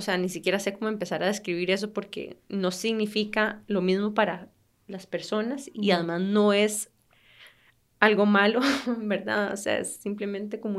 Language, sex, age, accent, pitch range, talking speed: Spanish, female, 20-39, Colombian, 195-245 Hz, 165 wpm